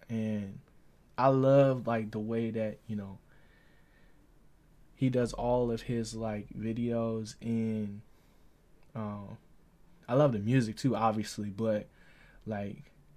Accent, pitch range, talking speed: American, 105-125 Hz, 125 wpm